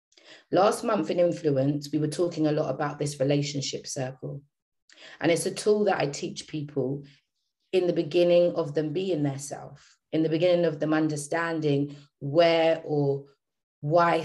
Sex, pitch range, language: female, 145-185 Hz, English